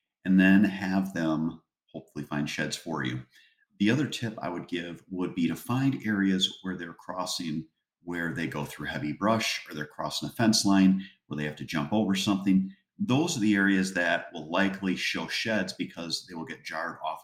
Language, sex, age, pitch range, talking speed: English, male, 50-69, 80-100 Hz, 200 wpm